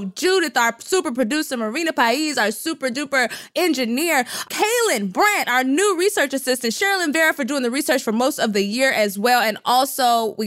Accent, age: American, 20-39